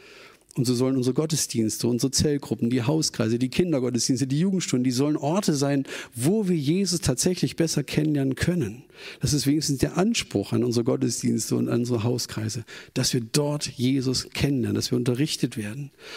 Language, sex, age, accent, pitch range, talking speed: German, male, 40-59, German, 125-165 Hz, 165 wpm